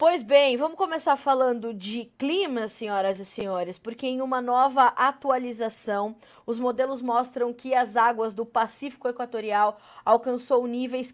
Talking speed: 140 wpm